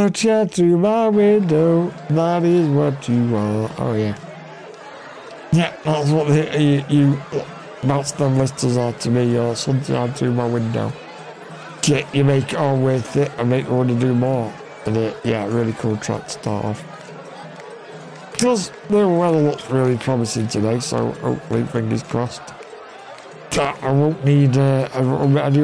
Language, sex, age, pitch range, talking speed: English, male, 60-79, 120-150 Hz, 155 wpm